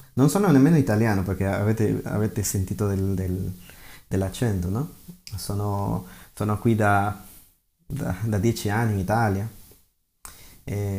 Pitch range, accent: 100-125 Hz, native